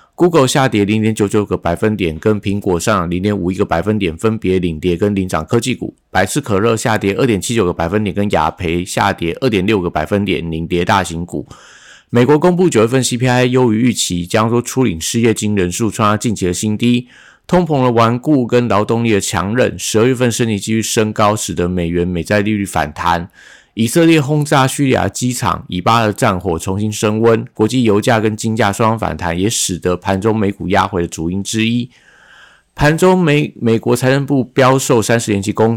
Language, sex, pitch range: Chinese, male, 95-120 Hz